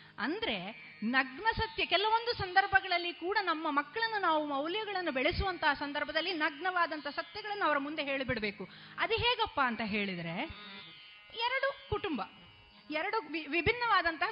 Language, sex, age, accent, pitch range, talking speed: Kannada, female, 30-49, native, 265-375 Hz, 110 wpm